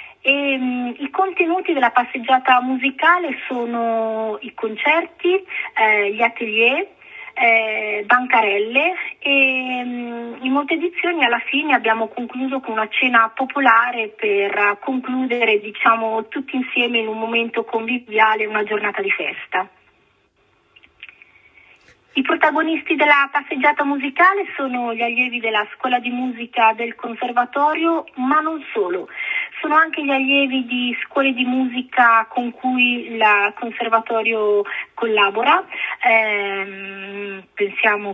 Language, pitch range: Italian, 220-275 Hz